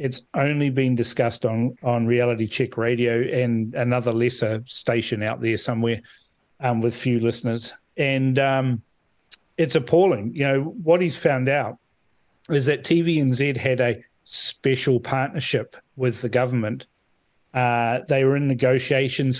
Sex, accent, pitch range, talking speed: male, Australian, 125-145 Hz, 140 wpm